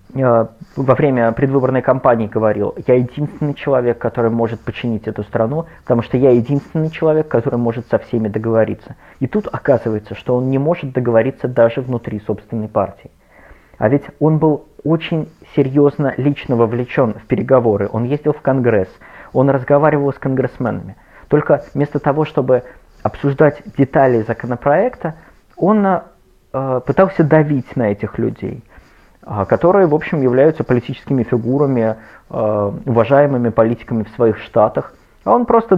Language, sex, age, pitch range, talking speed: Russian, male, 20-39, 115-150 Hz, 135 wpm